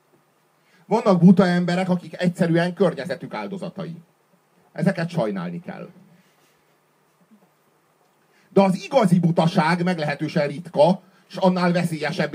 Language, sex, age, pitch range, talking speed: Hungarian, male, 40-59, 165-190 Hz, 90 wpm